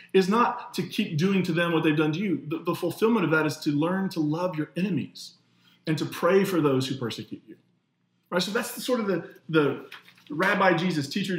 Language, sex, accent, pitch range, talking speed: English, male, American, 135-190 Hz, 225 wpm